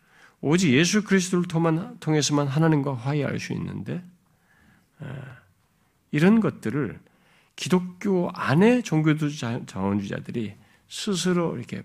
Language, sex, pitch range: Korean, male, 120-165 Hz